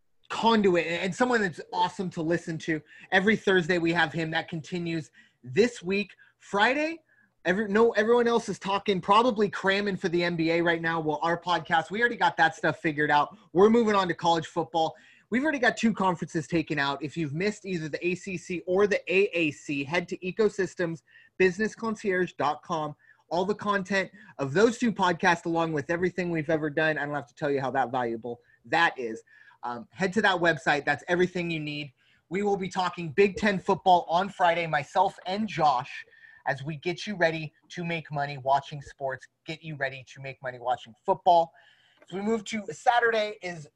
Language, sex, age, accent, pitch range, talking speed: English, male, 30-49, American, 155-200 Hz, 190 wpm